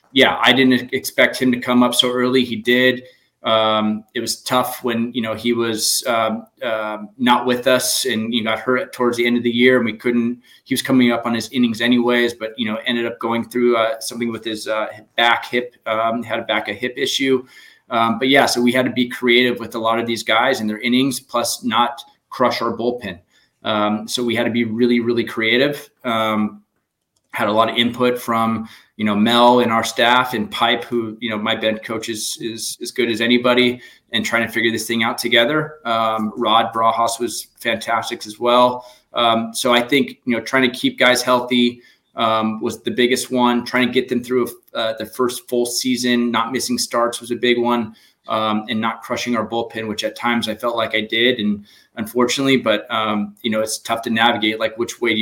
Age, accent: 20-39, American